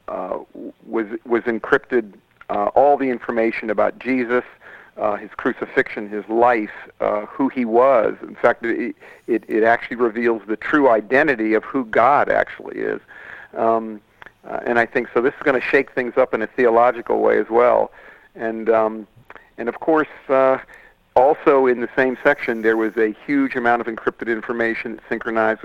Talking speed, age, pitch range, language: 170 wpm, 50-69, 110-125 Hz, English